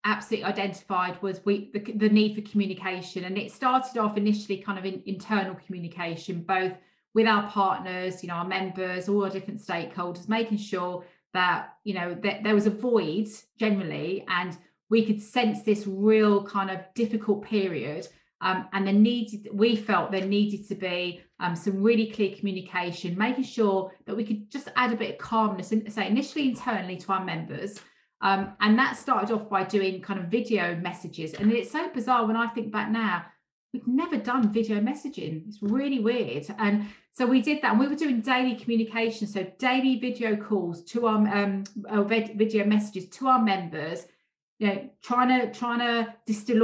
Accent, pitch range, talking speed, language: British, 190-230 Hz, 185 wpm, English